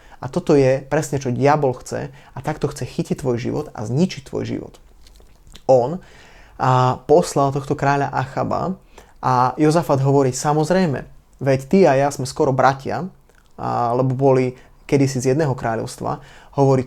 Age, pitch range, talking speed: 20-39, 130-155 Hz, 150 wpm